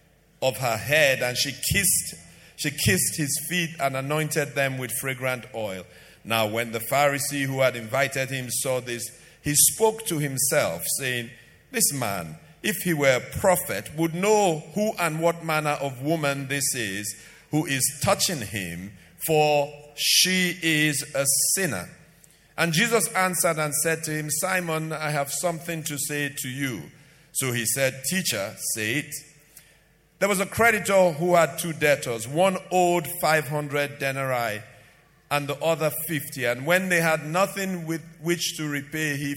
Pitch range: 135-170 Hz